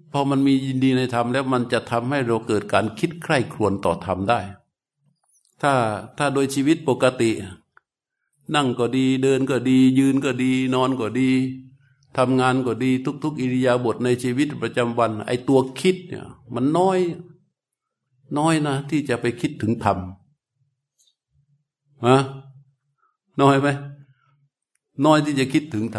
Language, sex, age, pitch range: Thai, male, 60-79, 120-145 Hz